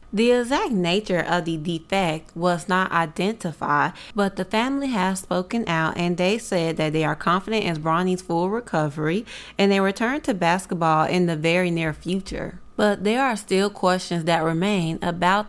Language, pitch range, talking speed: English, 175-220 Hz, 170 wpm